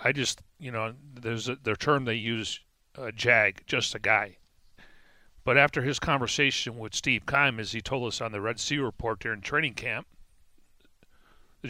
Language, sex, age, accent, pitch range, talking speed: English, male, 40-59, American, 120-140 Hz, 180 wpm